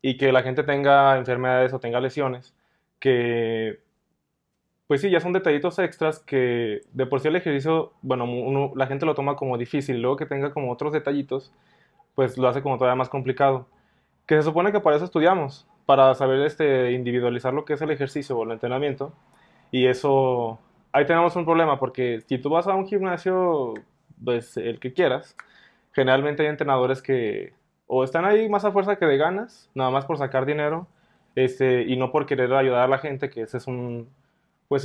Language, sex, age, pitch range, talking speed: Spanish, male, 20-39, 130-150 Hz, 190 wpm